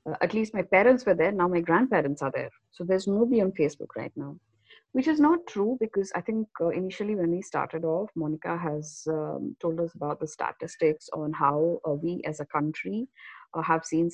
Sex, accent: female, Indian